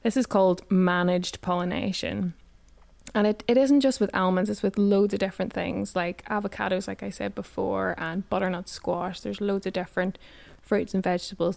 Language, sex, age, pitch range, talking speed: English, female, 20-39, 180-205 Hz, 175 wpm